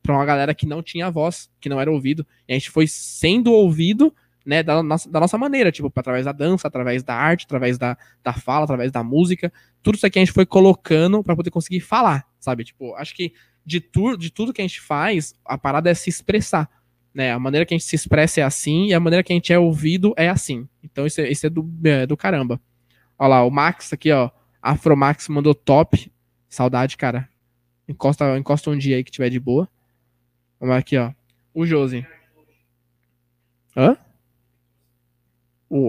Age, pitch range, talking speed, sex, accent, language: 20-39, 125-160 Hz, 200 wpm, male, Brazilian, Portuguese